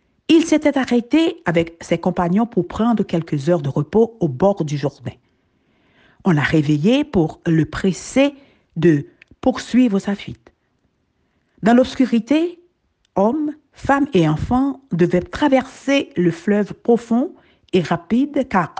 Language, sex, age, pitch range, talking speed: French, female, 60-79, 175-265 Hz, 130 wpm